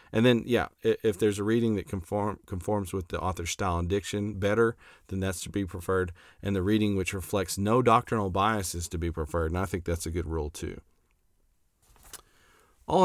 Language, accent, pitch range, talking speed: English, American, 90-110 Hz, 195 wpm